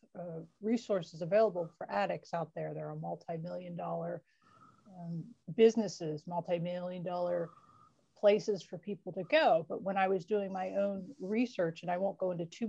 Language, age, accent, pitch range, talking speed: English, 30-49, American, 175-205 Hz, 160 wpm